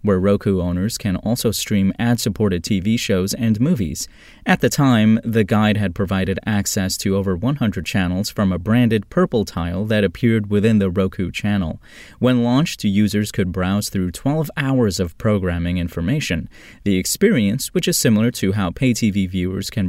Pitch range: 95-120 Hz